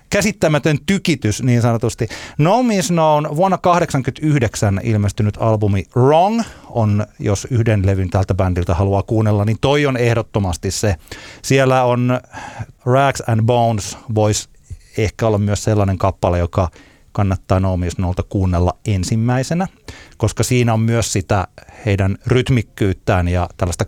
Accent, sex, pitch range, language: native, male, 100-125 Hz, Finnish